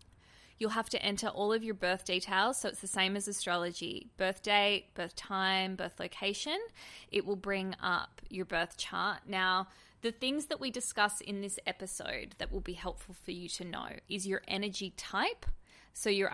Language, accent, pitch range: English, Australian, 185-220 Hz